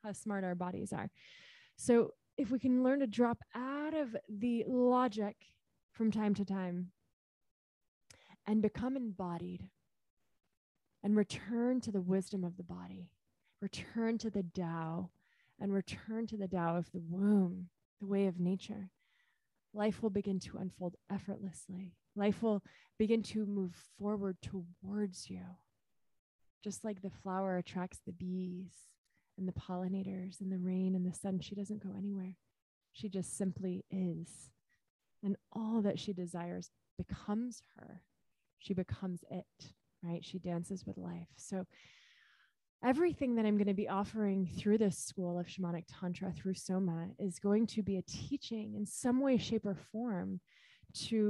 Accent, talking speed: American, 150 wpm